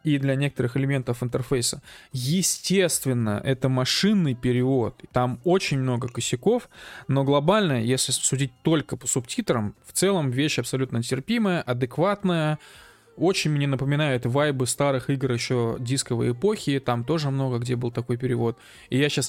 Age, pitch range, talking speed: 20-39, 125-160 Hz, 140 wpm